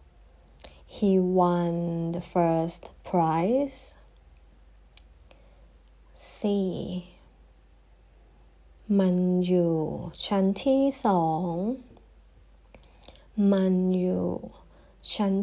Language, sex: Thai, female